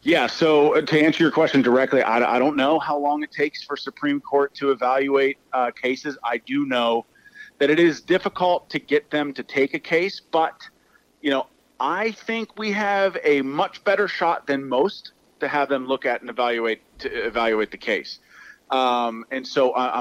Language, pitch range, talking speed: English, 120-150 Hz, 190 wpm